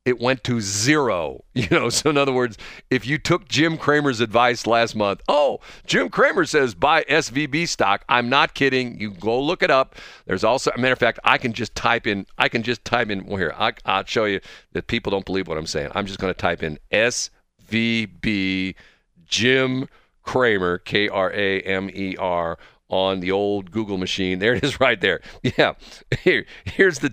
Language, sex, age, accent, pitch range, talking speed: English, male, 50-69, American, 100-140 Hz, 185 wpm